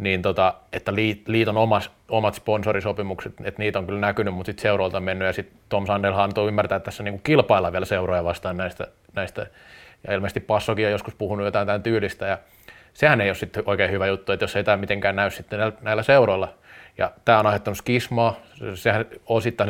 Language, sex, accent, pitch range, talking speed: Finnish, male, native, 95-110 Hz, 195 wpm